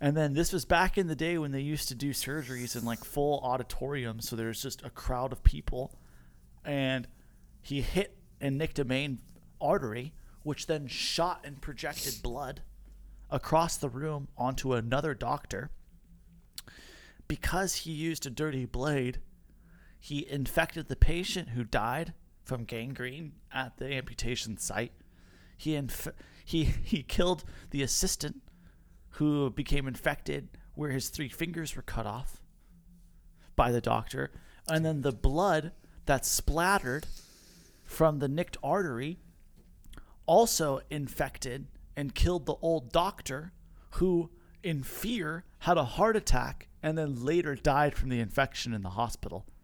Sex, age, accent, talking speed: male, 30-49, American, 140 wpm